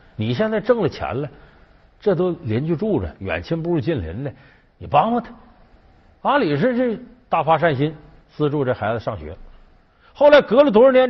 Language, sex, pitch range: Chinese, male, 110-185 Hz